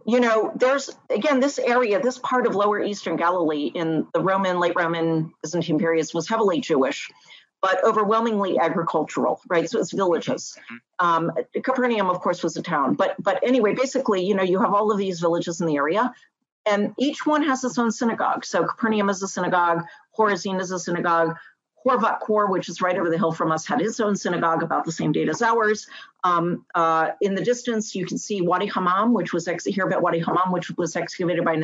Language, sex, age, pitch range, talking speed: English, female, 40-59, 170-220 Hz, 205 wpm